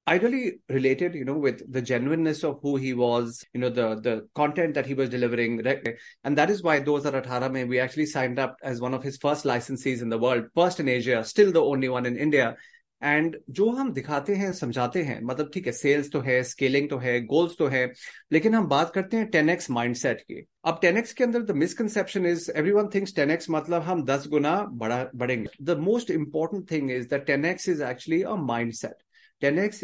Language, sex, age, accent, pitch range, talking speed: Hindi, male, 30-49, native, 130-175 Hz, 220 wpm